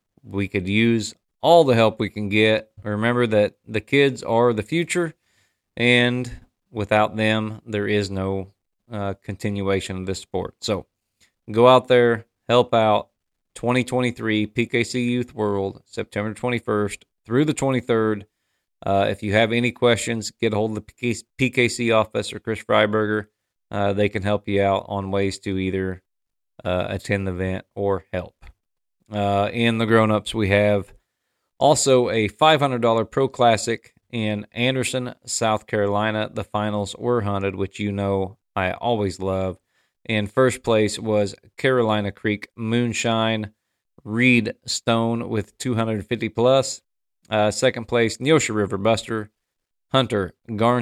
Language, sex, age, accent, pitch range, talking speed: English, male, 30-49, American, 100-120 Hz, 140 wpm